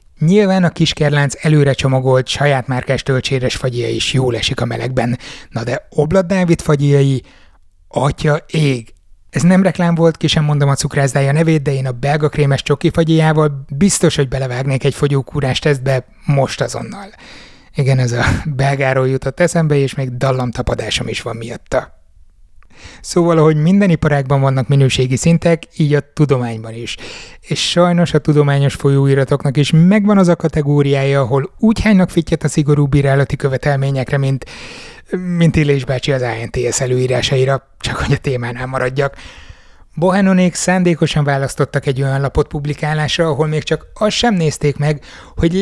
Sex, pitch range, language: male, 130-155 Hz, Hungarian